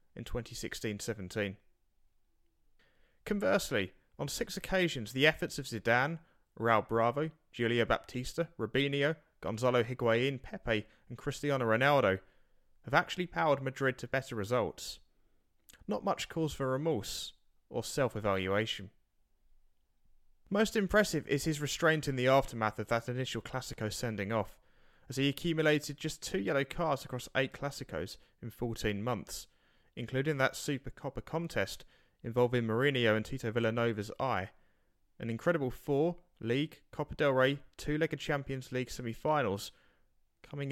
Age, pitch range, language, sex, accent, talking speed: 30-49, 110-145 Hz, English, male, British, 125 wpm